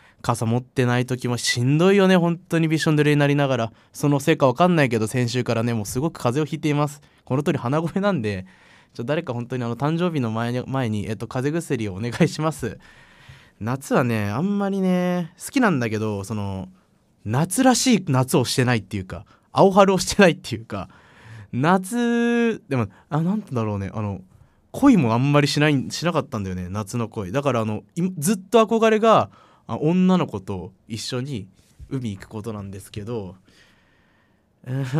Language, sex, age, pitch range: Japanese, male, 20-39, 110-160 Hz